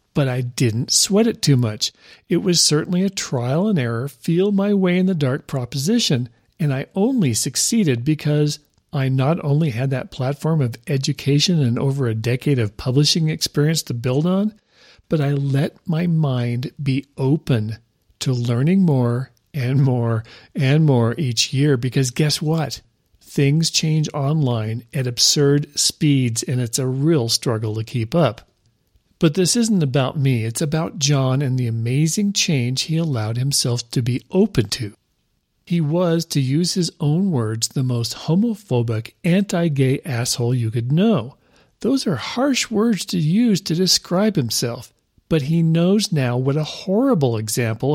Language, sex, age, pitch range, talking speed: English, male, 50-69, 125-170 Hz, 160 wpm